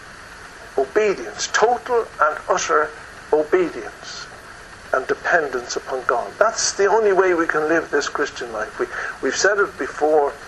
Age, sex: 60-79, male